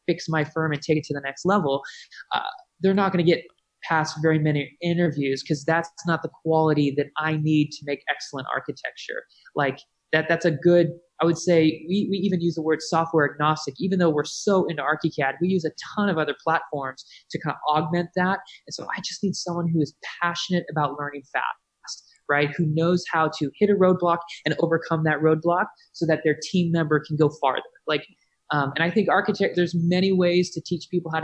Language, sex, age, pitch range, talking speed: English, male, 20-39, 155-180 Hz, 215 wpm